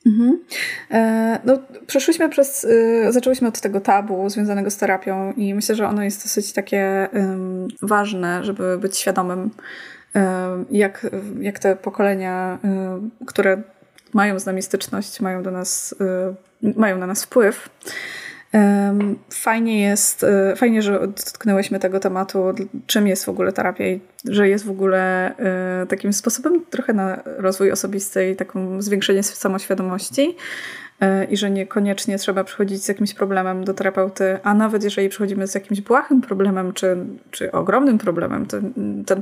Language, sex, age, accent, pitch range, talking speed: Polish, female, 20-39, native, 190-220 Hz, 130 wpm